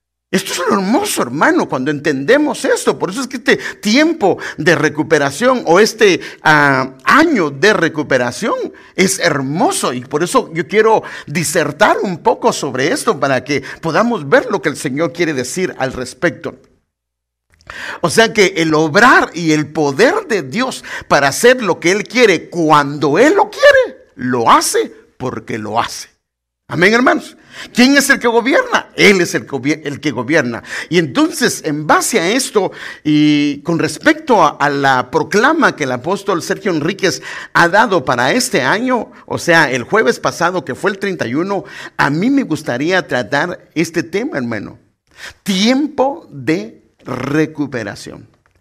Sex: male